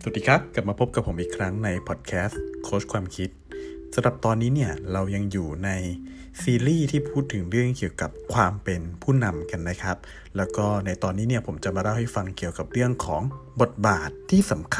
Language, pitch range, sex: Thai, 90-130 Hz, male